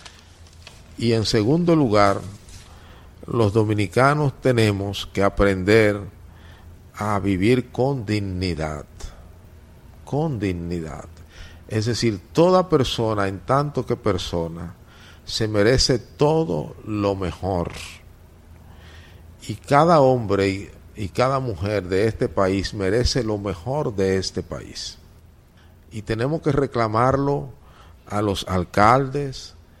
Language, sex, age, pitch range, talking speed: Spanish, male, 50-69, 85-115 Hz, 100 wpm